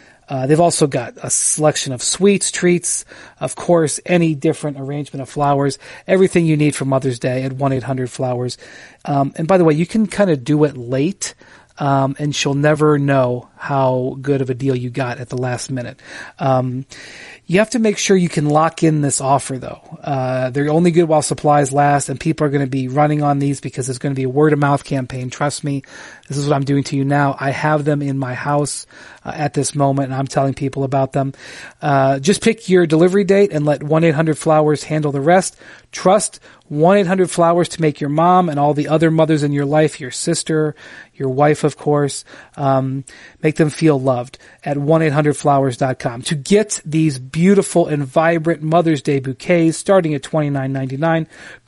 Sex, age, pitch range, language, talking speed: male, 30-49, 135-160 Hz, English, 195 wpm